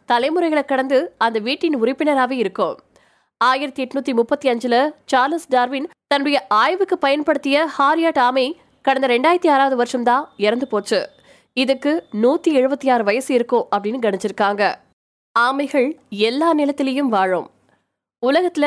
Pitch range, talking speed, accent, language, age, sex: 235-295 Hz, 35 wpm, native, Tamil, 20-39, female